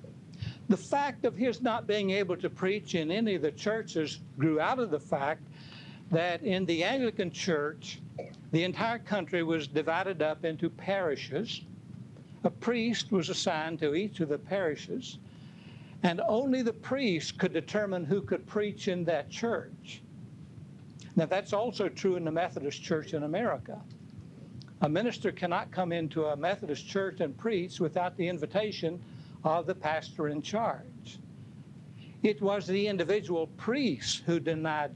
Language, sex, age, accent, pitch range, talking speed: English, male, 60-79, American, 155-195 Hz, 150 wpm